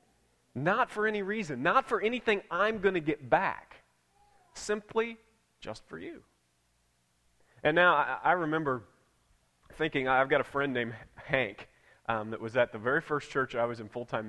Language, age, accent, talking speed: English, 30-49, American, 170 wpm